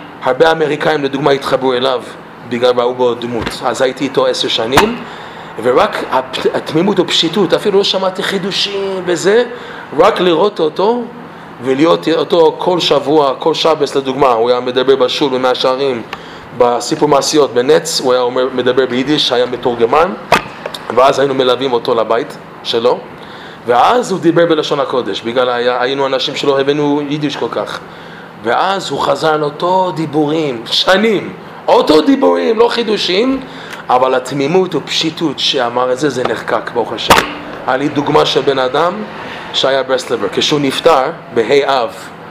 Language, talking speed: English, 130 wpm